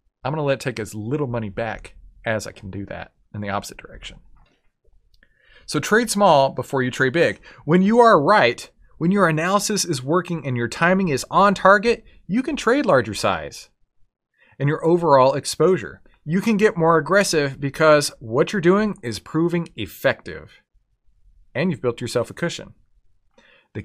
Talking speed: 175 wpm